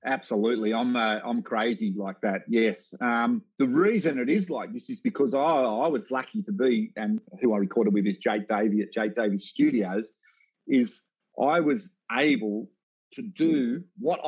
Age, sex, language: 40-59, male, English